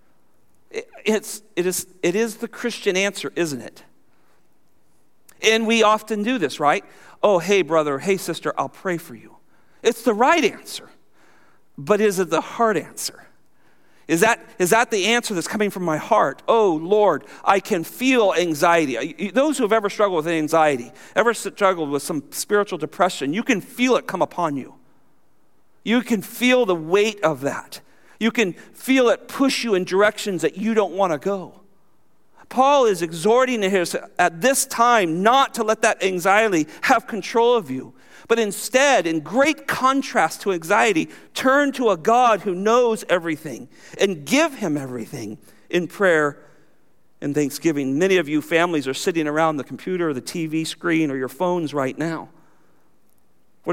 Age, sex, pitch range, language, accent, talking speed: 50-69, male, 160-230 Hz, English, American, 165 wpm